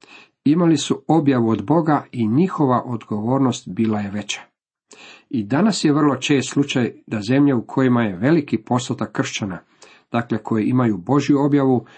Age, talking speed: 50-69, 150 wpm